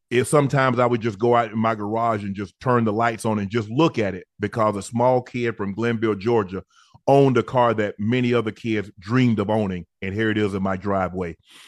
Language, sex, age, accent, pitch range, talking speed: English, male, 30-49, American, 105-125 Hz, 230 wpm